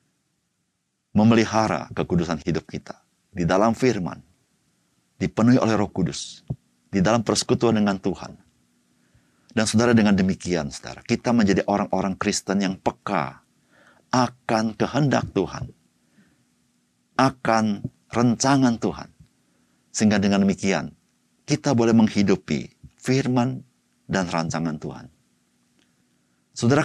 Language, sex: Indonesian, male